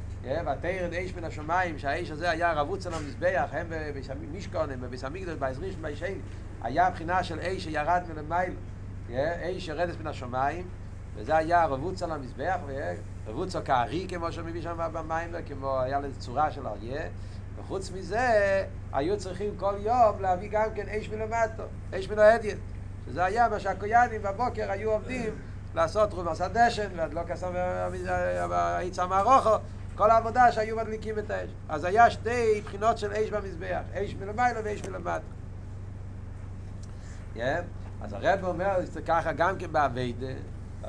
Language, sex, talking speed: Hebrew, male, 140 wpm